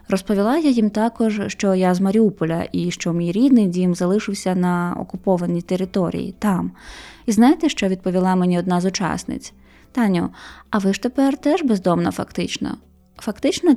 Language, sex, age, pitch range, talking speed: Ukrainian, female, 20-39, 185-225 Hz, 155 wpm